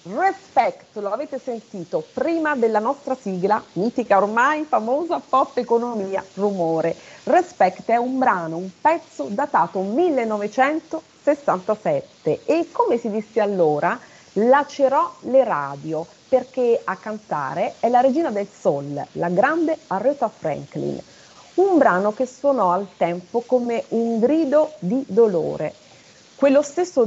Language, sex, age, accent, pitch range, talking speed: Italian, female, 30-49, native, 190-270 Hz, 120 wpm